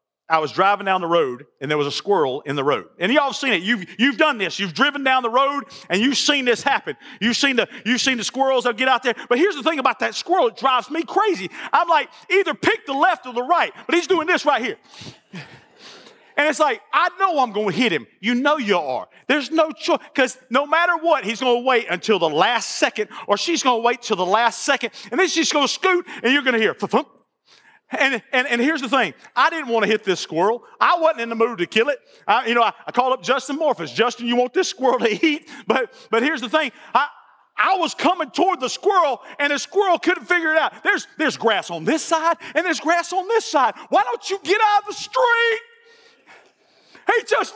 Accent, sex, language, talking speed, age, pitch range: American, male, English, 250 wpm, 40-59, 230-340 Hz